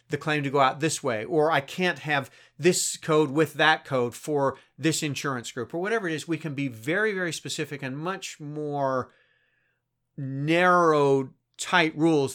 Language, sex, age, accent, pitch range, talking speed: English, male, 40-59, American, 120-155 Hz, 175 wpm